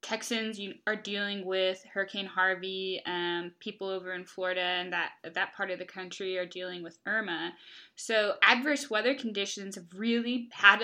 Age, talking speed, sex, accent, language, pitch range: 10-29, 160 wpm, female, American, English, 185-215 Hz